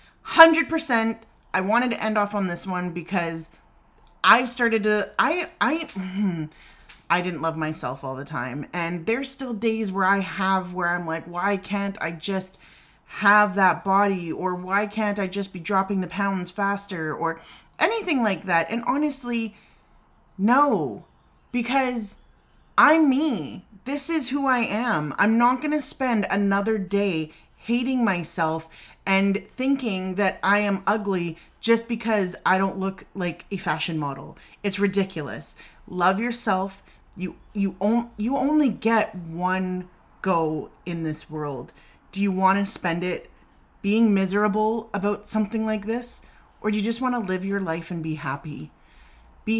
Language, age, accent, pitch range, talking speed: English, 30-49, American, 170-225 Hz, 155 wpm